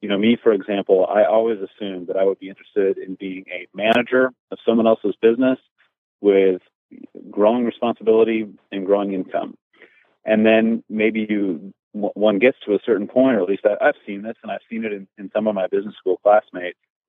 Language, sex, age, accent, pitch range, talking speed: English, male, 30-49, American, 95-115 Hz, 195 wpm